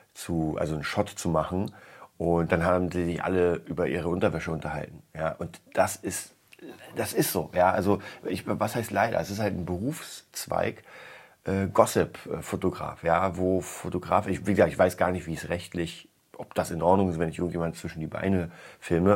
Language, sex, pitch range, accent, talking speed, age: German, male, 85-100 Hz, German, 195 wpm, 40-59